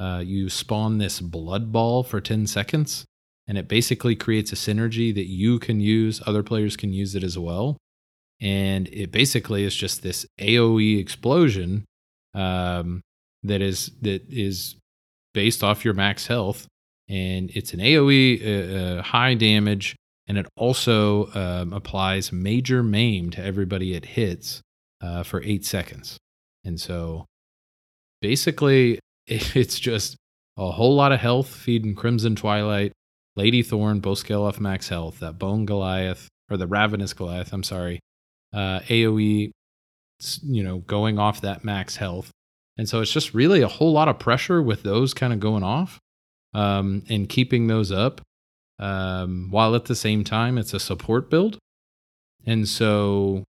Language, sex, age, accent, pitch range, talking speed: English, male, 30-49, American, 95-115 Hz, 155 wpm